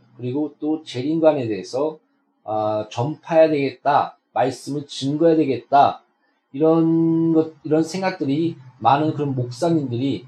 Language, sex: Korean, male